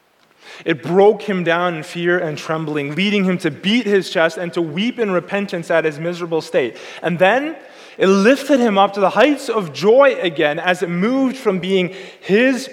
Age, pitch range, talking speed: 20-39, 160-220 Hz, 195 wpm